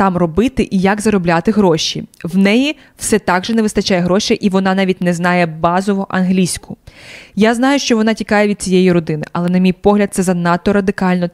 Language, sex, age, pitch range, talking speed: Ukrainian, female, 20-39, 180-215 Hz, 190 wpm